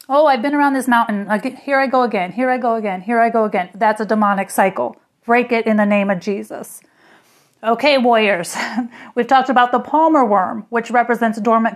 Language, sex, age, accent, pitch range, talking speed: English, female, 30-49, American, 205-245 Hz, 205 wpm